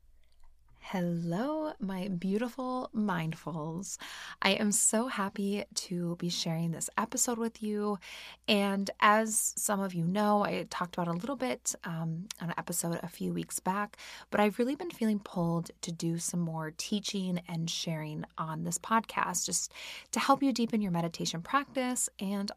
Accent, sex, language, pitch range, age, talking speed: American, female, English, 165-220 Hz, 20-39, 160 wpm